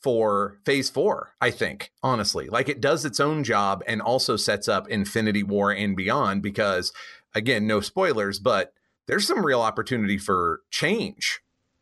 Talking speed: 155 wpm